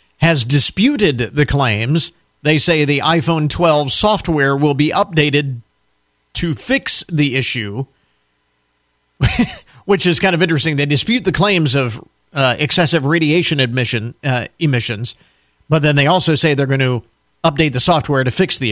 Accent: American